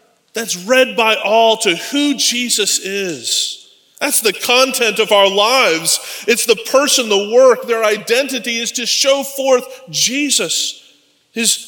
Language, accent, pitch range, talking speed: English, American, 180-245 Hz, 140 wpm